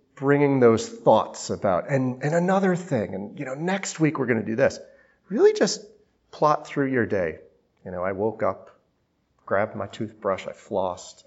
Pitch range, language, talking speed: 110-165 Hz, English, 180 wpm